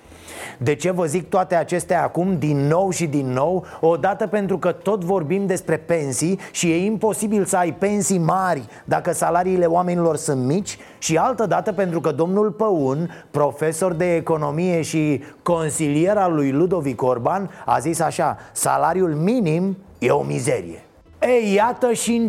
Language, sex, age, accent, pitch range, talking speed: Romanian, male, 30-49, native, 165-215 Hz, 160 wpm